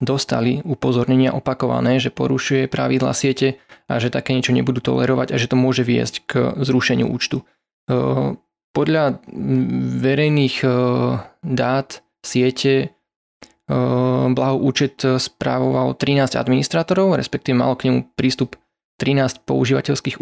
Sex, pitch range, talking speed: male, 85-135 Hz, 110 wpm